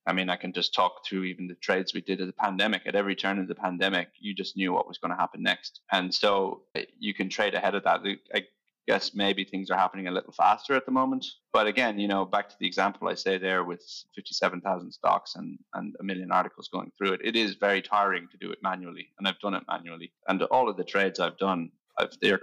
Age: 20-39